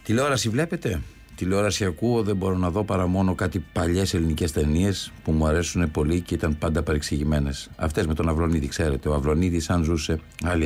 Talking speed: 180 wpm